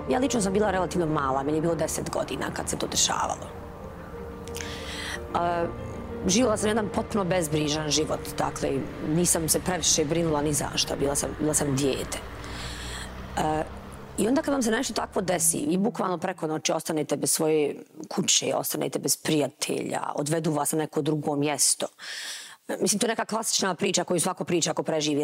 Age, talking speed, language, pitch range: 40-59, 170 wpm, English, 150-190 Hz